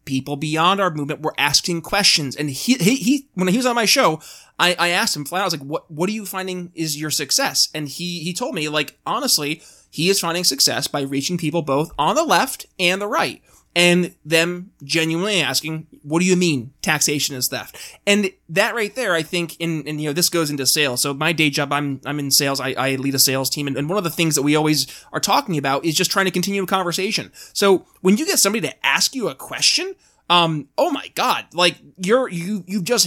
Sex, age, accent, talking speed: male, 20-39, American, 240 wpm